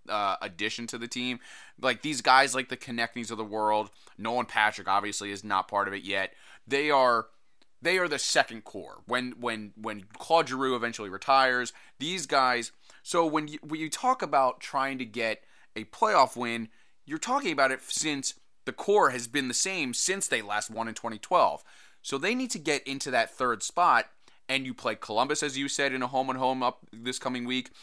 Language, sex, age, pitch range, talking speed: English, male, 20-39, 115-150 Hz, 200 wpm